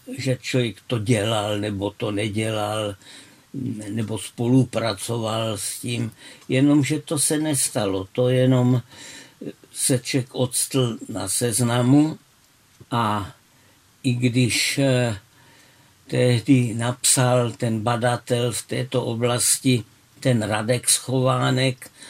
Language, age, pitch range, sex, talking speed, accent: Czech, 60-79, 115-130 Hz, male, 90 wpm, native